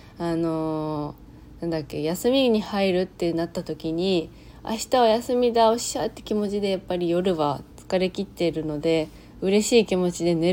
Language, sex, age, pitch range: Japanese, female, 20-39, 170-215 Hz